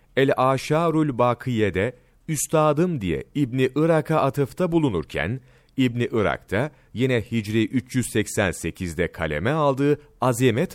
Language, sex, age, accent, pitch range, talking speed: Turkish, male, 40-59, native, 105-145 Hz, 85 wpm